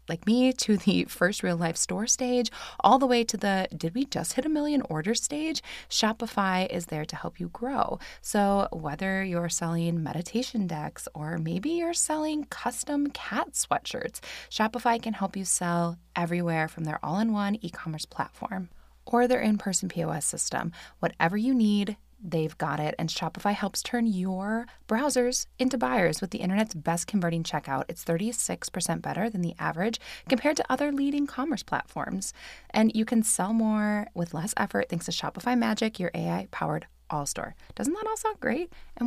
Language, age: English, 20-39